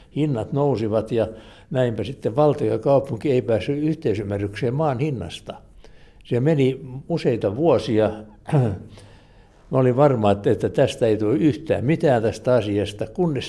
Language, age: Finnish, 60-79